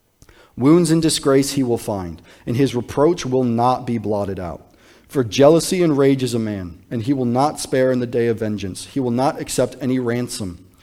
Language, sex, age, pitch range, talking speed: English, male, 40-59, 105-140 Hz, 205 wpm